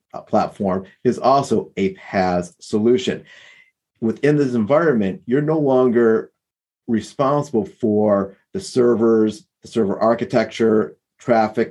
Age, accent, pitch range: 40-59, American, 100-130 Hz